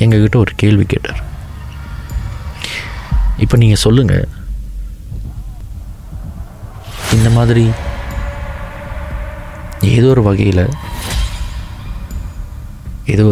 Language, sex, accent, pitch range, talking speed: Tamil, male, native, 90-110 Hz, 65 wpm